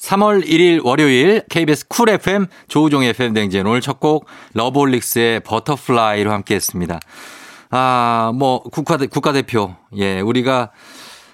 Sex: male